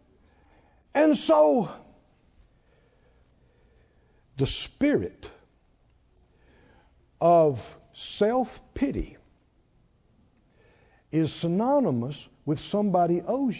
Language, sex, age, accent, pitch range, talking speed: English, male, 60-79, American, 135-200 Hz, 50 wpm